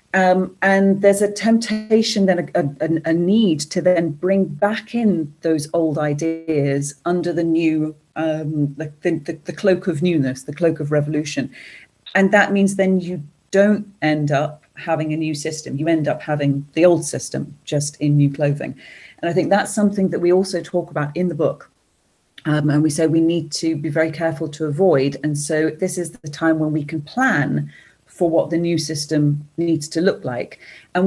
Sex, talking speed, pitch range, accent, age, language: female, 190 wpm, 150-180 Hz, British, 40-59, English